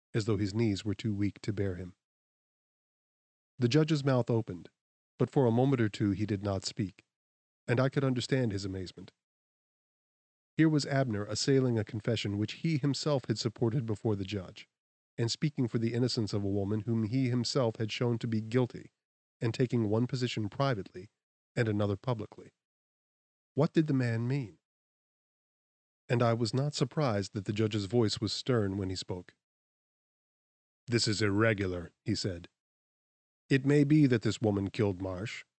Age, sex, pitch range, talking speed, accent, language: 20-39, male, 105-130 Hz, 170 wpm, American, English